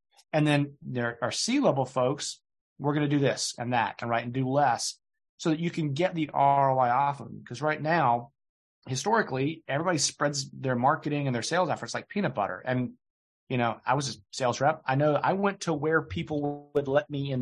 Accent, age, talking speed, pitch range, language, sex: American, 30-49, 215 wpm, 120-150 Hz, English, male